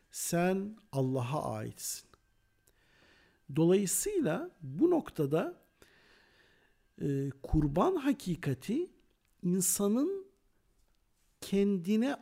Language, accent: Turkish, native